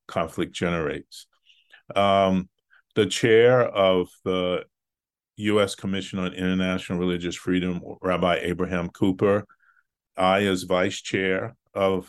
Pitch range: 90-95 Hz